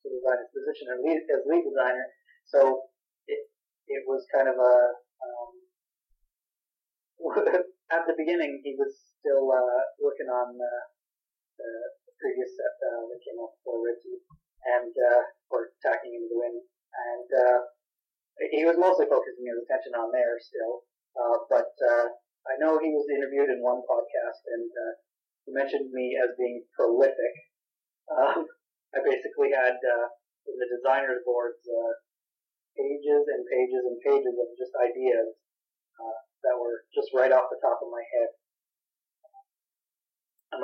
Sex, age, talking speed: male, 30-49, 150 wpm